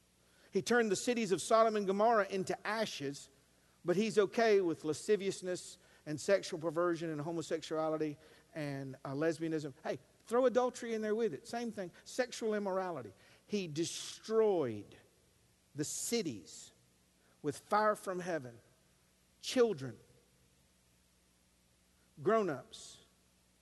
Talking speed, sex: 110 wpm, male